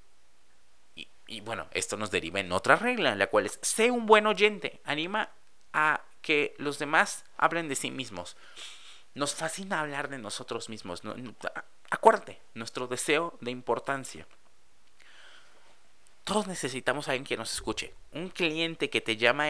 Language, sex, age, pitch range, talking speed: Spanish, male, 30-49, 130-180 Hz, 140 wpm